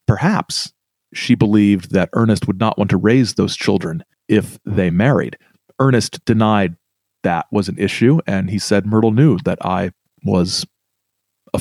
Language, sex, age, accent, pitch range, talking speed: English, male, 40-59, American, 105-130 Hz, 155 wpm